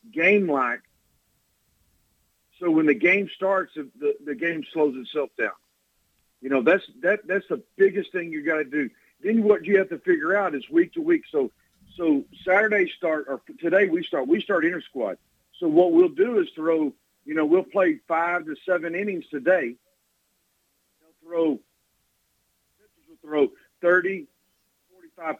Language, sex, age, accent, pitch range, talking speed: English, male, 50-69, American, 165-255 Hz, 155 wpm